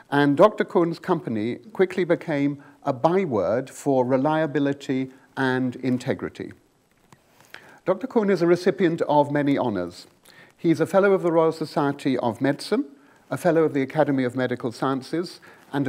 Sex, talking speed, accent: male, 145 wpm, British